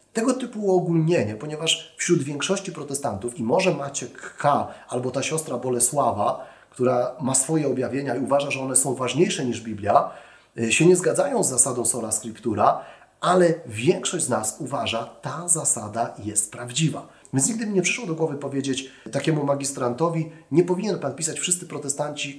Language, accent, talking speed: Polish, native, 160 wpm